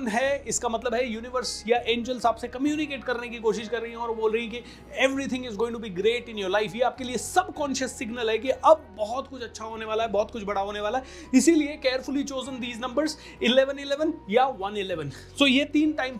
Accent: native